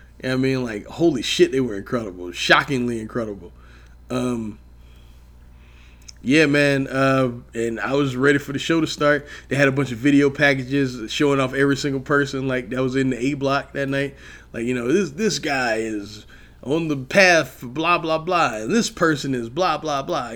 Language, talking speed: English, 190 wpm